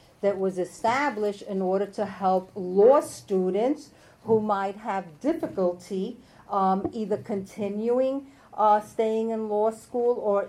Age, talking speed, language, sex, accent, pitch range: 50-69, 125 wpm, English, female, American, 175-210 Hz